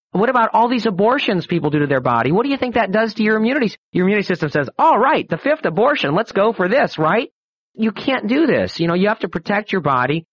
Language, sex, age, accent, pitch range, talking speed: English, male, 40-59, American, 150-215 Hz, 260 wpm